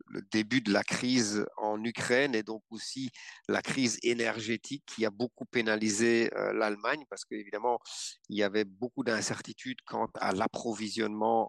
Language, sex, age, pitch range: English, male, 50-69, 110-125 Hz